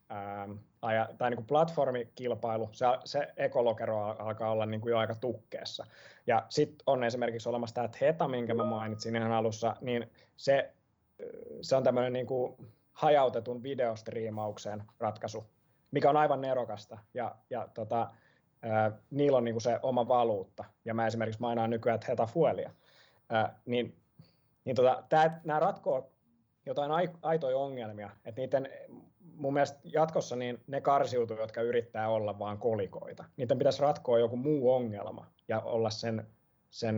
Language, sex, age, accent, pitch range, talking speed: Finnish, male, 20-39, native, 110-130 Hz, 140 wpm